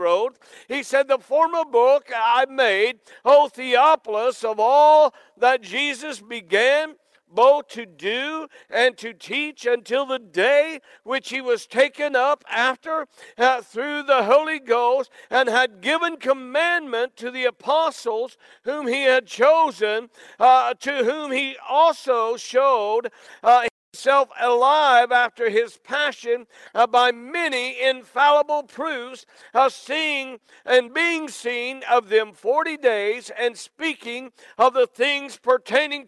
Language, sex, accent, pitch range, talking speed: English, male, American, 235-295 Hz, 130 wpm